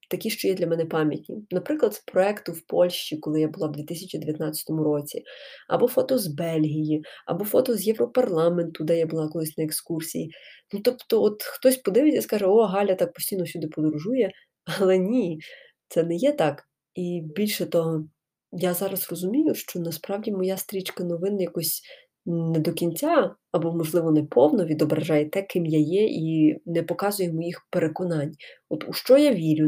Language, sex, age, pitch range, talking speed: Ukrainian, female, 20-39, 165-210 Hz, 165 wpm